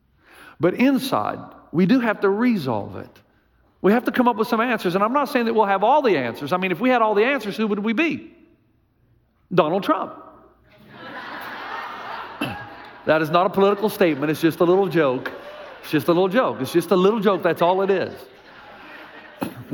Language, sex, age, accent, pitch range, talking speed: English, male, 40-59, American, 155-225 Hz, 200 wpm